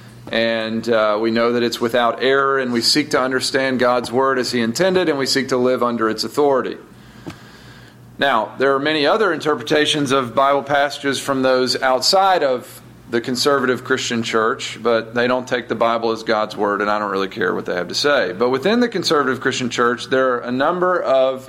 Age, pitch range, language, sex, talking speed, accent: 40-59, 120-150 Hz, English, male, 205 wpm, American